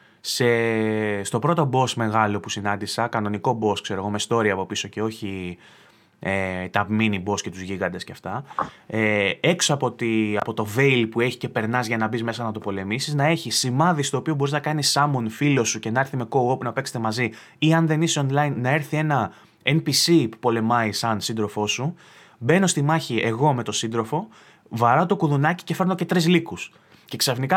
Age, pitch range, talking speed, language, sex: 20-39, 115-155 Hz, 205 wpm, Greek, male